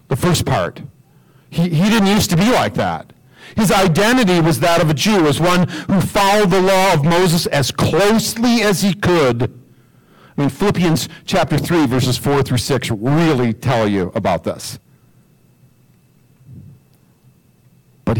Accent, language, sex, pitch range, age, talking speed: American, English, male, 130-185 Hz, 50-69, 150 wpm